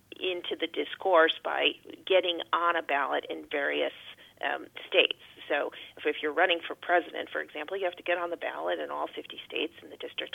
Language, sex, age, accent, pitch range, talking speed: English, female, 40-59, American, 165-185 Hz, 205 wpm